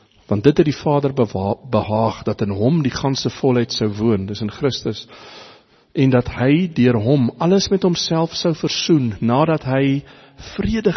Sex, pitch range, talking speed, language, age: male, 110-145 Hz, 165 wpm, English, 50-69